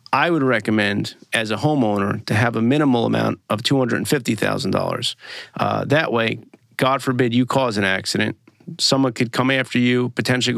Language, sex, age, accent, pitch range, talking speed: English, male, 40-59, American, 115-135 Hz, 160 wpm